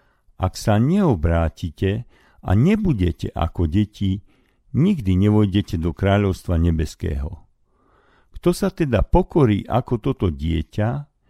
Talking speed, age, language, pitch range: 100 wpm, 60-79, Slovak, 90-125 Hz